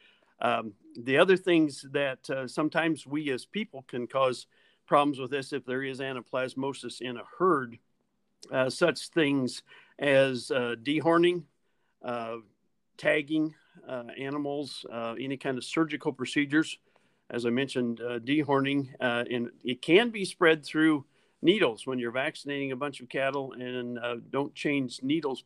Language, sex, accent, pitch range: English, male, American, 125-150 Hz